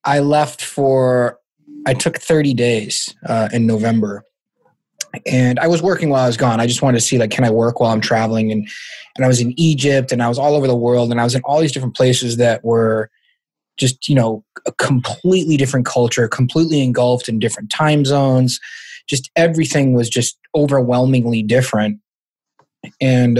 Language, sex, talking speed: English, male, 185 wpm